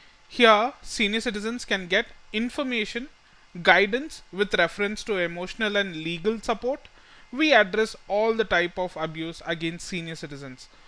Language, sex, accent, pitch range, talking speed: English, male, Indian, 175-235 Hz, 130 wpm